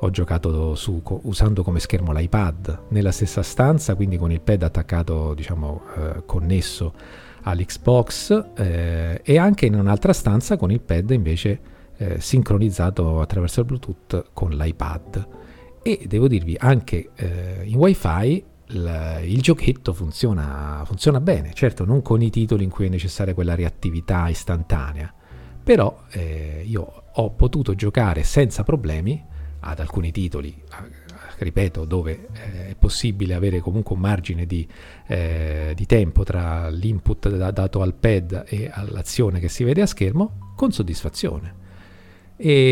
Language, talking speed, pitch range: Italian, 140 wpm, 85-110 Hz